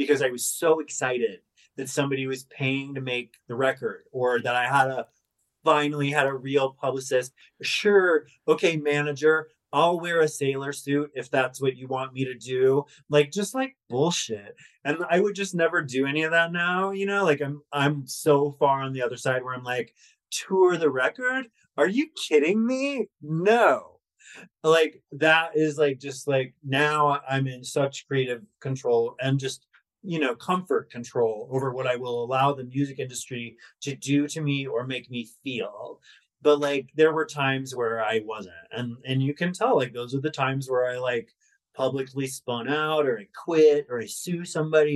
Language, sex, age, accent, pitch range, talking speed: English, male, 30-49, American, 130-160 Hz, 185 wpm